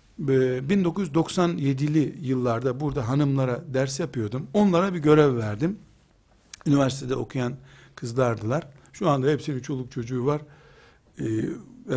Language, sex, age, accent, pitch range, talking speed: Turkish, male, 60-79, native, 130-175 Hz, 105 wpm